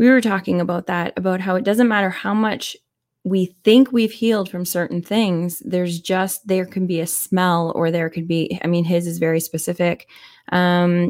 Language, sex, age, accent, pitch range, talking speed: English, female, 20-39, American, 170-200 Hz, 200 wpm